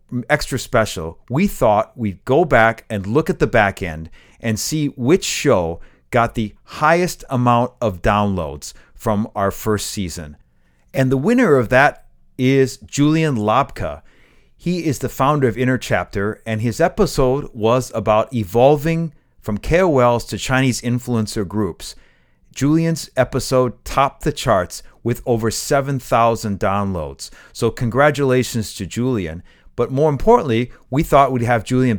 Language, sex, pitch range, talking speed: English, male, 105-135 Hz, 145 wpm